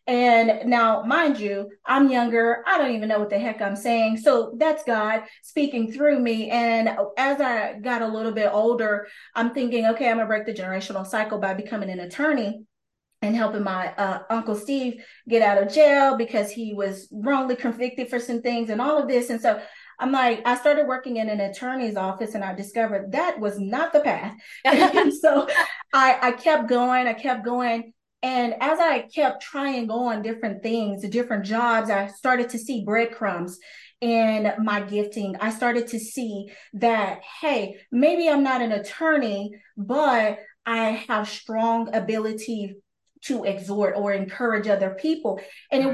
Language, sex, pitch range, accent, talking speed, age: English, female, 210-265 Hz, American, 175 wpm, 30-49